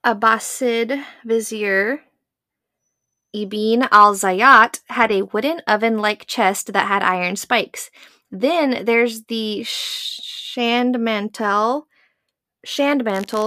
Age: 20-39